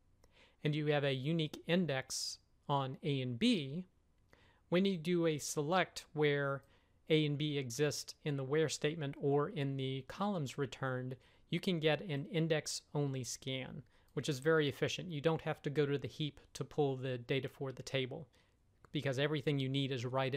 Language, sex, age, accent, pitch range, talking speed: English, male, 40-59, American, 130-155 Hz, 180 wpm